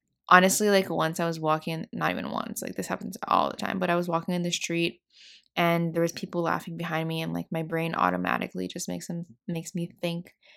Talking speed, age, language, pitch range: 225 wpm, 20-39, English, 170-205 Hz